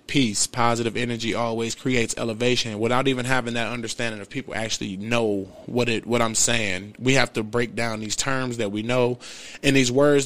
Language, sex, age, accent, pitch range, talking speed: English, male, 20-39, American, 115-130 Hz, 195 wpm